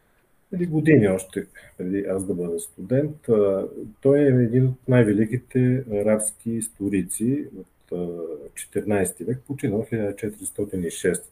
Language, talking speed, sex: Bulgarian, 105 wpm, male